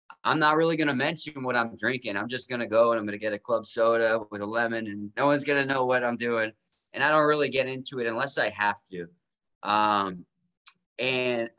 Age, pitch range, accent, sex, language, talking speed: 20-39, 110-145 Hz, American, male, English, 245 wpm